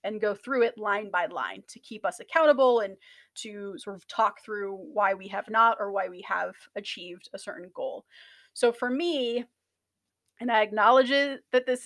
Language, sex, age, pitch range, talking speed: English, female, 30-49, 205-255 Hz, 185 wpm